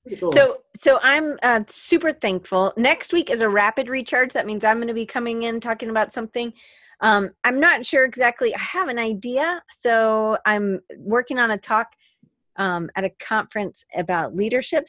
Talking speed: 175 wpm